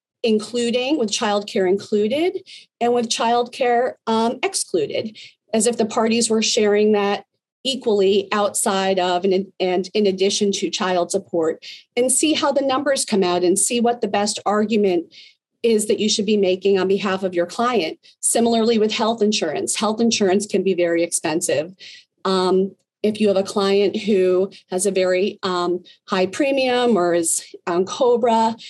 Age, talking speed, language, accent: 40-59, 155 wpm, English, American